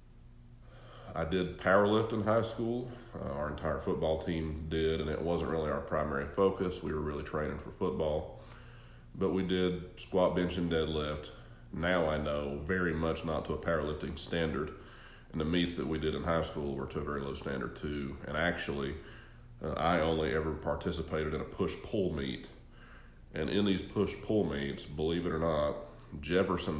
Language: English